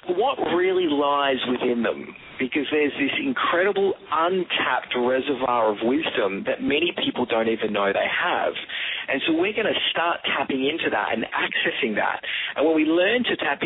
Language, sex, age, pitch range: English, male, 40-59, 115-185 Hz